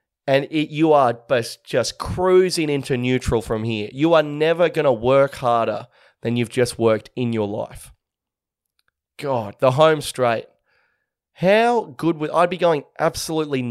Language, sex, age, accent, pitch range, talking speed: English, male, 20-39, Australian, 120-155 Hz, 155 wpm